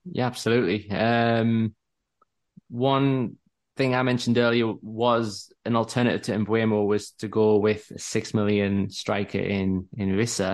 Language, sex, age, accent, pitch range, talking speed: English, male, 20-39, British, 100-120 Hz, 135 wpm